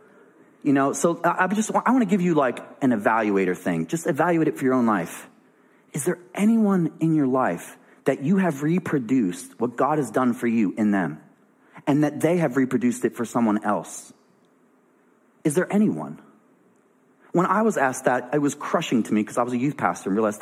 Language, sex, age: English, male, 30-49